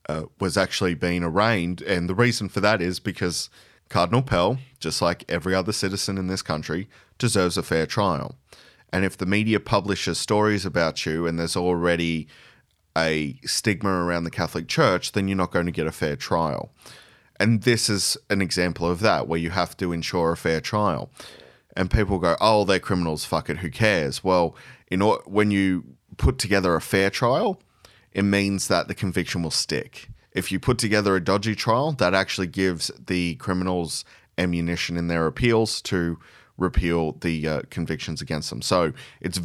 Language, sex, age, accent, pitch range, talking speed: English, male, 30-49, Australian, 85-100 Hz, 180 wpm